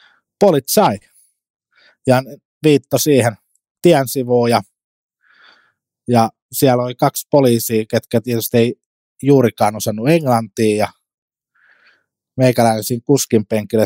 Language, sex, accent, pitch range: Finnish, male, native, 105-130 Hz